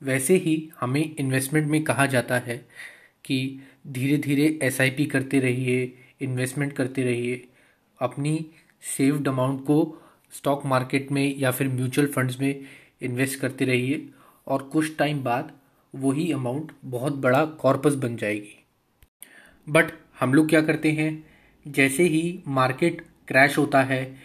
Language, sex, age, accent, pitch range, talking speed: Hindi, male, 20-39, native, 130-150 Hz, 135 wpm